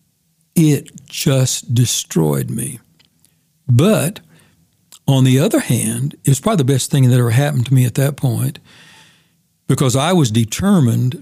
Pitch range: 130-165 Hz